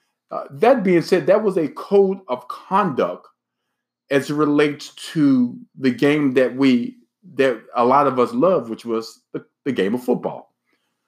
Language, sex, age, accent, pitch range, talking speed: English, male, 50-69, American, 135-200 Hz, 170 wpm